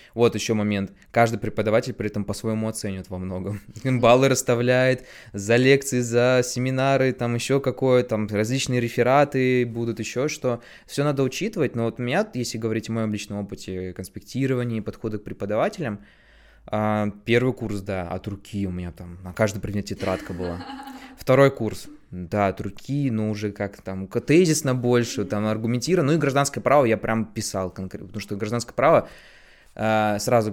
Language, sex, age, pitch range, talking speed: Russian, male, 20-39, 105-130 Hz, 165 wpm